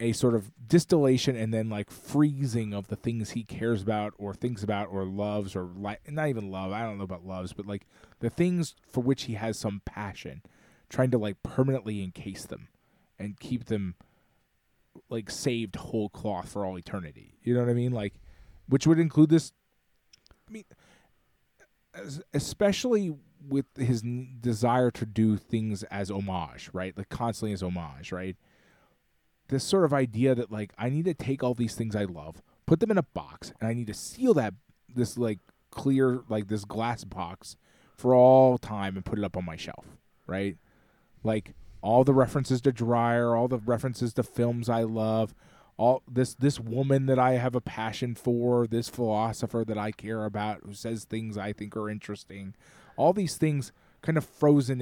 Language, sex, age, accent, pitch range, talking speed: English, male, 20-39, American, 105-130 Hz, 185 wpm